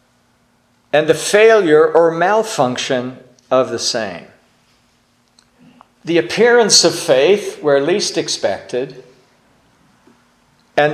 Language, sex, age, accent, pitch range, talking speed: English, male, 50-69, American, 120-160 Hz, 90 wpm